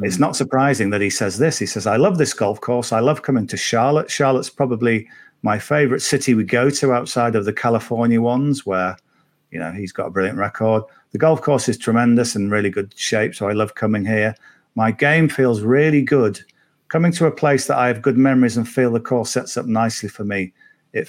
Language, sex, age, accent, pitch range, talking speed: English, male, 50-69, British, 105-130 Hz, 220 wpm